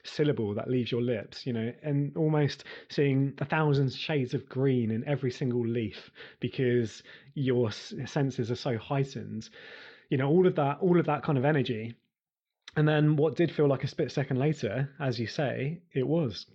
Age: 20-39